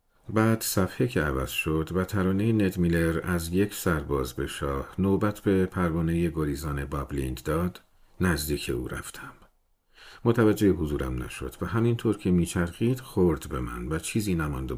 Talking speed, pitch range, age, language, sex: 150 wpm, 75-105 Hz, 50-69, Persian, male